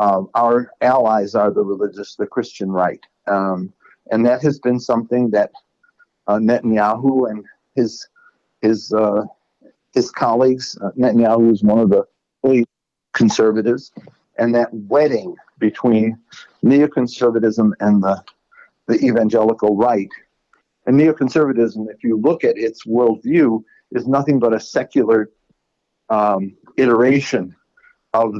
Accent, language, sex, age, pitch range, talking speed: American, English, male, 50-69, 105-120 Hz, 120 wpm